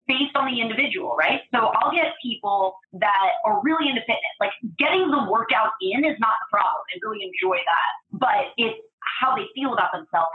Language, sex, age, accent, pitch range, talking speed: English, female, 30-49, American, 185-240 Hz, 195 wpm